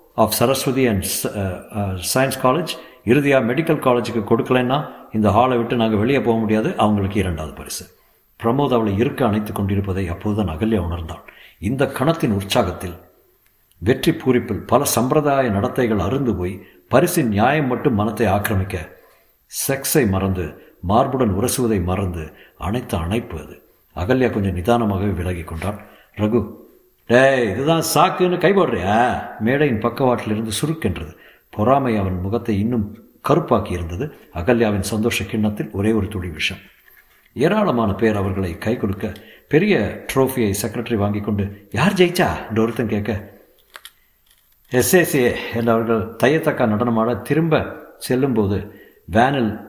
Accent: native